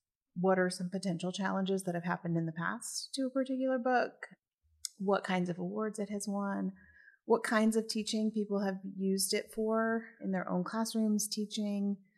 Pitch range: 175-215 Hz